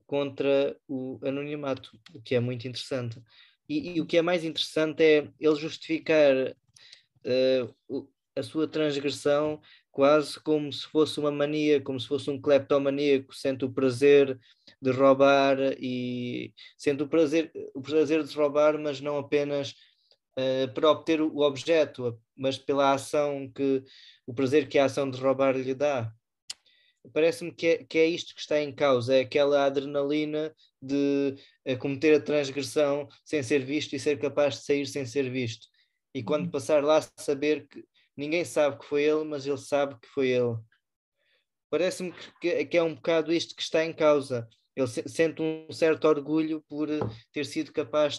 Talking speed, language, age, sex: 165 wpm, Portuguese, 20-39, male